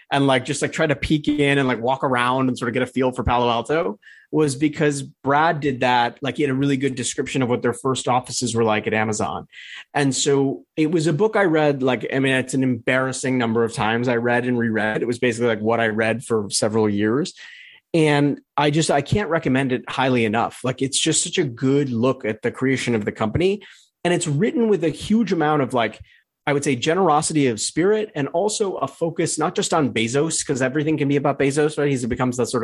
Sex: male